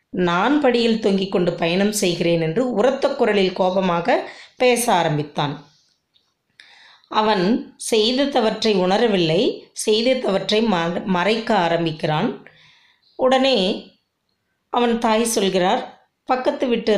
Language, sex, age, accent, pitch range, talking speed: Tamil, female, 20-39, native, 180-235 Hz, 85 wpm